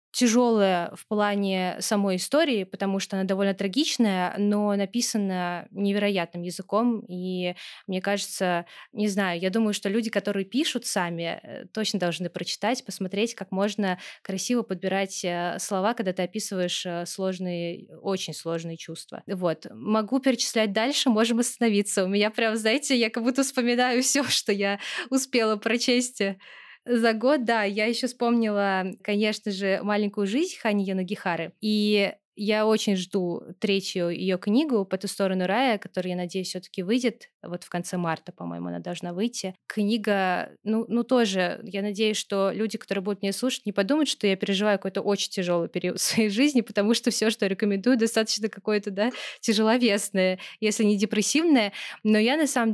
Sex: female